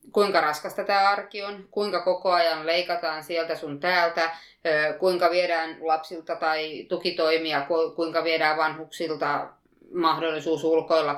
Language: Finnish